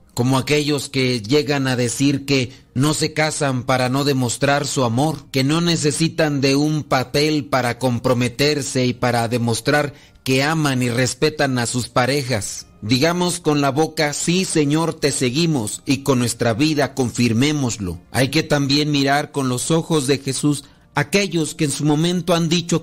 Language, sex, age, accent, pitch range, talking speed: Spanish, male, 40-59, Mexican, 125-150 Hz, 165 wpm